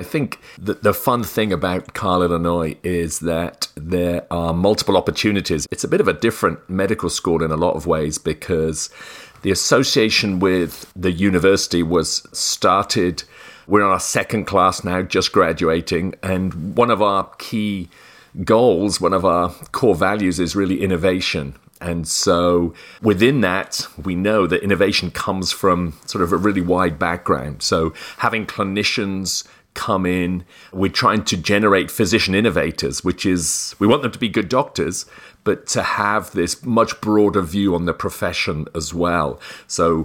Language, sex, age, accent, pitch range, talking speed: English, male, 40-59, British, 85-95 Hz, 160 wpm